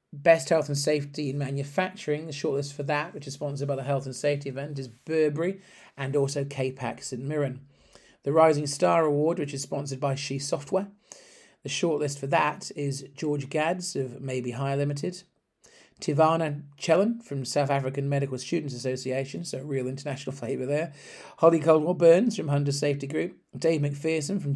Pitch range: 135-160 Hz